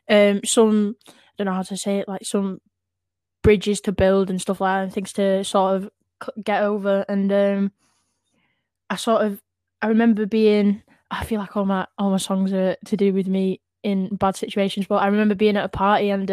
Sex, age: female, 10-29